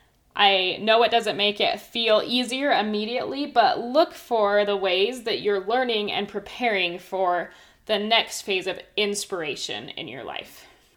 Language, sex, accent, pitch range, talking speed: English, female, American, 200-235 Hz, 155 wpm